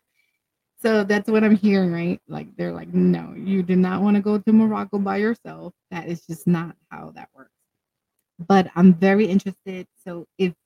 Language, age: English, 30-49